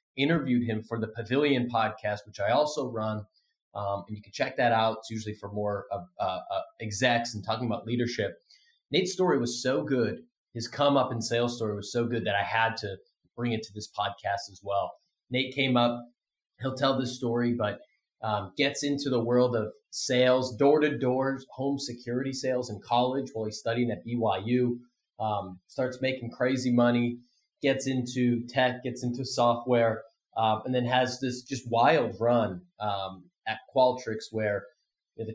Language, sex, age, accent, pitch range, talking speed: English, male, 30-49, American, 110-130 Hz, 175 wpm